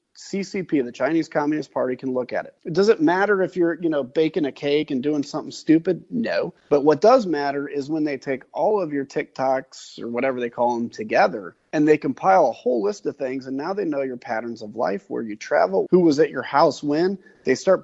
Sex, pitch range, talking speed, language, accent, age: male, 125-180 Hz, 235 wpm, English, American, 30-49